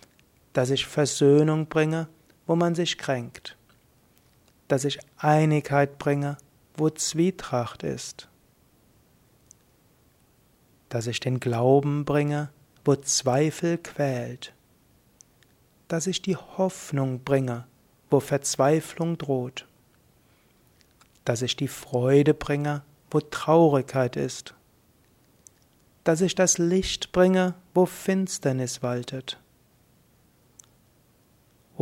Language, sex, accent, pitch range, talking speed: German, male, German, 130-165 Hz, 90 wpm